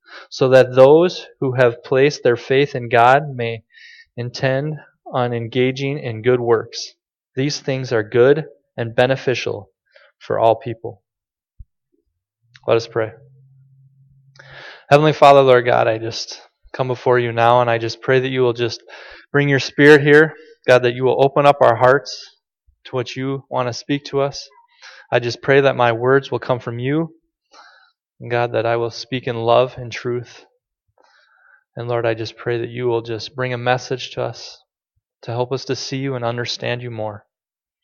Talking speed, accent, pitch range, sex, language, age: 175 wpm, American, 120-140 Hz, male, English, 20-39